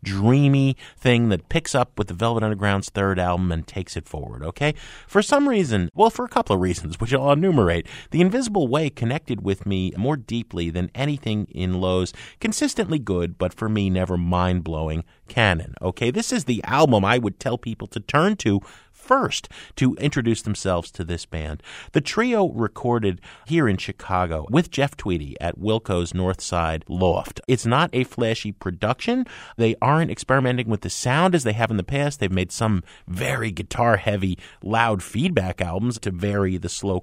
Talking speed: 180 wpm